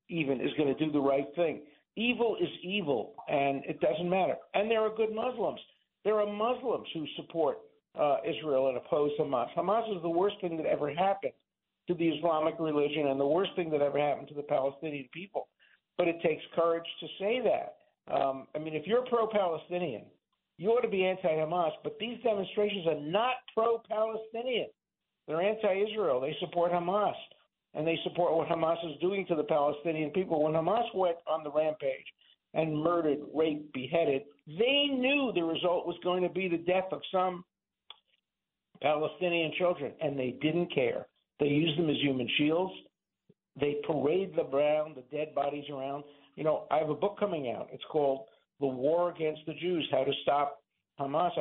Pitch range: 150-195 Hz